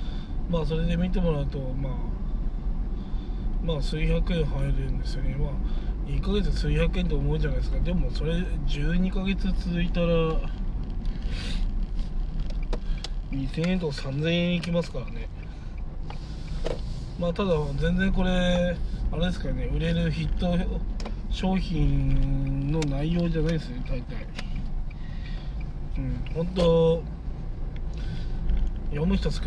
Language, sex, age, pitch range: Japanese, male, 20-39, 135-175 Hz